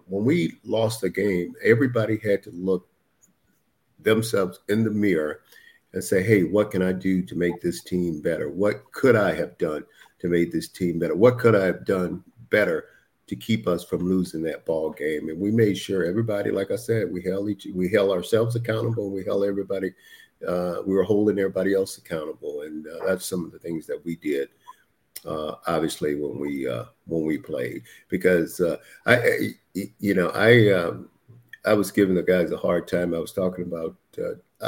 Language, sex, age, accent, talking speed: English, male, 50-69, American, 195 wpm